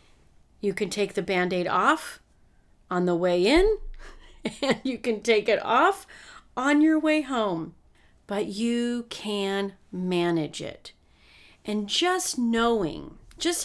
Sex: female